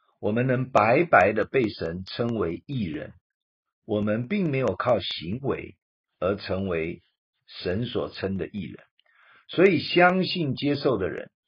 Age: 50-69